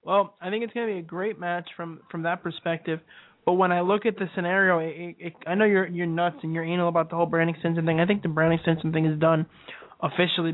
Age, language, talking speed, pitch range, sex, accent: 20-39, English, 255 wpm, 165-185 Hz, male, American